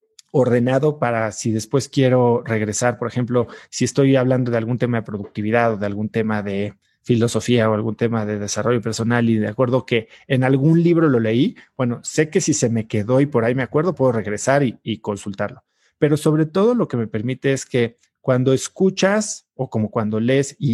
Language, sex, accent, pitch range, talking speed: Spanish, male, Mexican, 115-150 Hz, 205 wpm